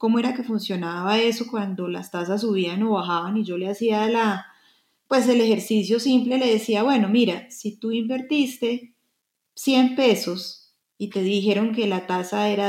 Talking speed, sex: 170 wpm, female